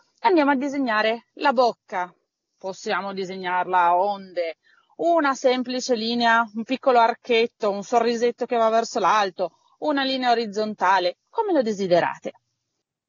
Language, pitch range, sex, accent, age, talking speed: Italian, 190-260 Hz, female, native, 30-49, 125 wpm